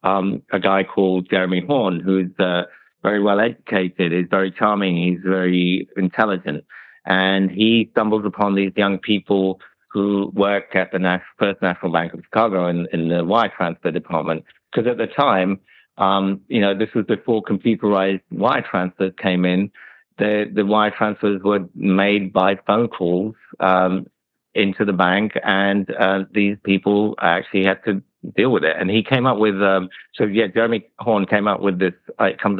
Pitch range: 95-105 Hz